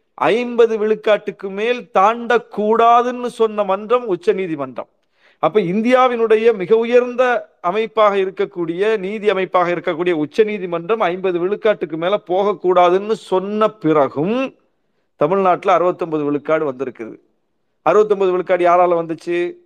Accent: native